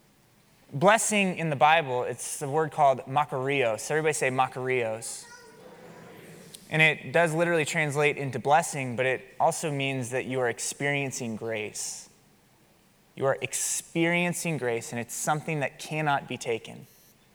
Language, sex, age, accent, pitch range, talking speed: English, male, 20-39, American, 150-235 Hz, 135 wpm